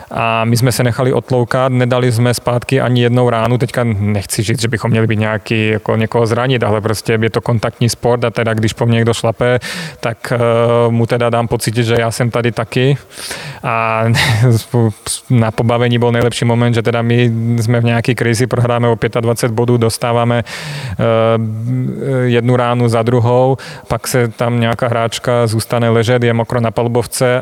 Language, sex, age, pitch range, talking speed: Czech, male, 30-49, 115-125 Hz, 165 wpm